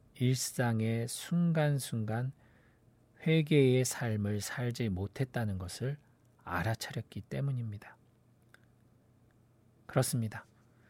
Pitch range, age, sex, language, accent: 110-125 Hz, 40-59, male, Korean, native